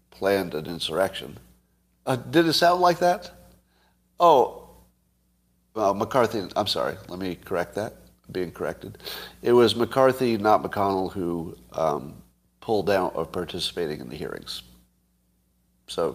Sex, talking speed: male, 130 wpm